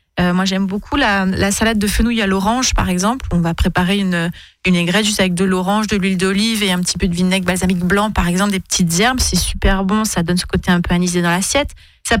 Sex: female